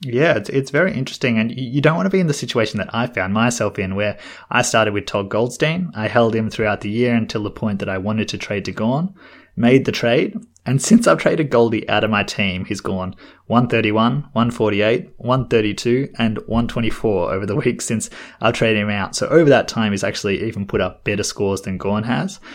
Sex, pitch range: male, 100-125 Hz